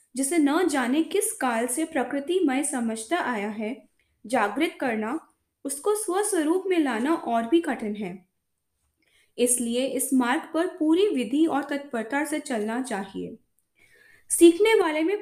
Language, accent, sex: Hindi, native, female